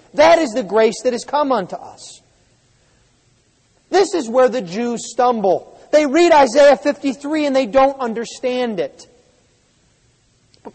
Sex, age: male, 40-59